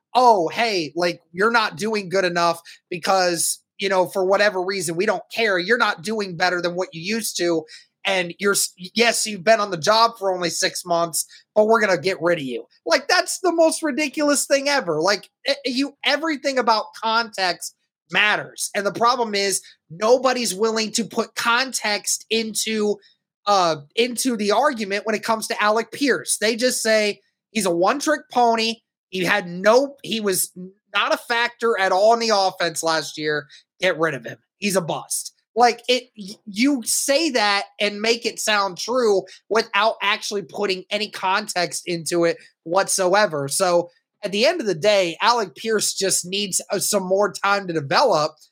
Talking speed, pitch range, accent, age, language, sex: 175 wpm, 180-230 Hz, American, 30-49, English, male